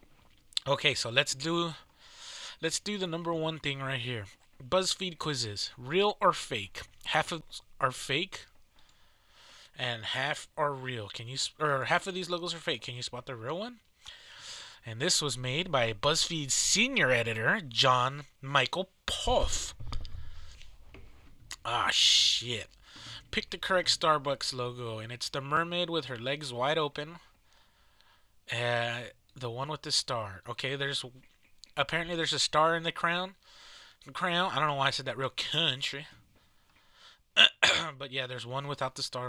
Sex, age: male, 20-39